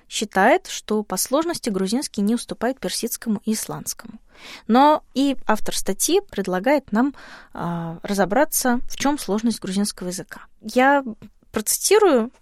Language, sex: Russian, female